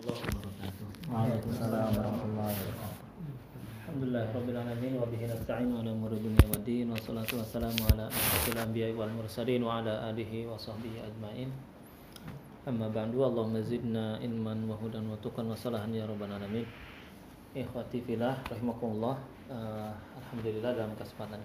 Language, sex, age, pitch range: Indonesian, male, 20-39, 105-115 Hz